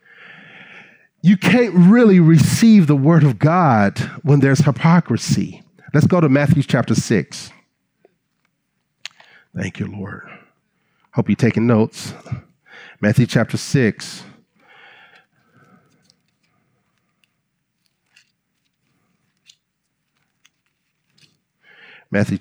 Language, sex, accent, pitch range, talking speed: English, male, American, 115-160 Hz, 75 wpm